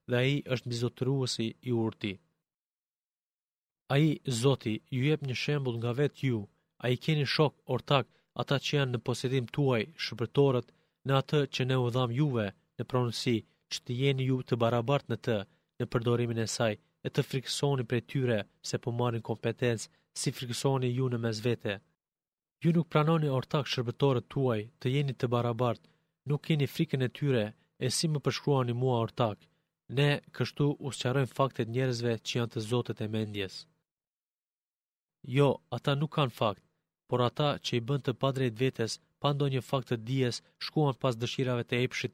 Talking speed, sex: 160 wpm, male